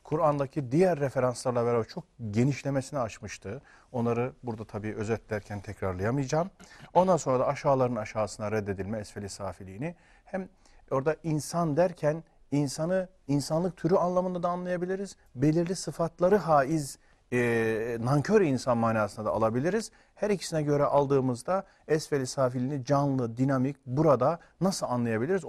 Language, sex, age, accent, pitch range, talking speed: Turkish, male, 40-59, native, 115-165 Hz, 115 wpm